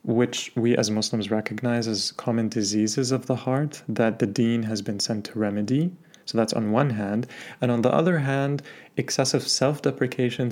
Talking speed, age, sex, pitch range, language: 175 wpm, 30-49, male, 115-135 Hz, English